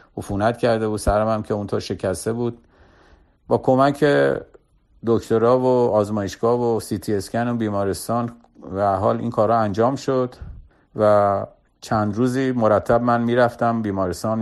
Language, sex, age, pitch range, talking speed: Persian, male, 50-69, 100-115 Hz, 145 wpm